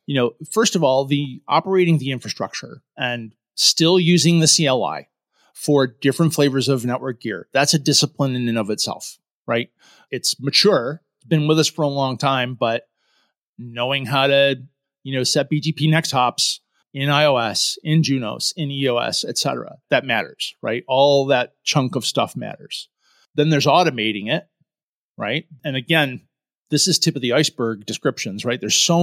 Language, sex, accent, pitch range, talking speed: English, male, American, 130-160 Hz, 165 wpm